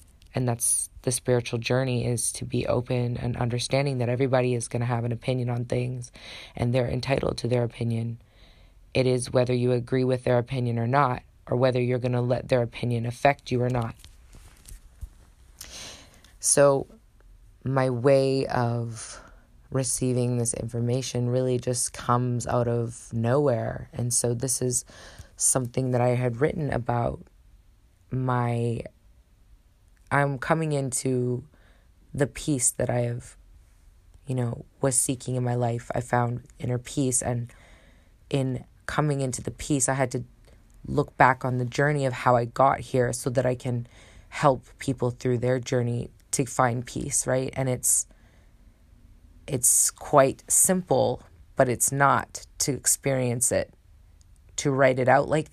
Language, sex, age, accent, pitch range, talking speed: English, female, 20-39, American, 115-130 Hz, 150 wpm